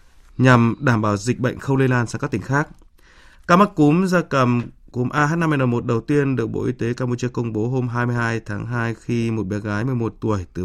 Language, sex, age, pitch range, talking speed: Vietnamese, male, 20-39, 115-155 Hz, 235 wpm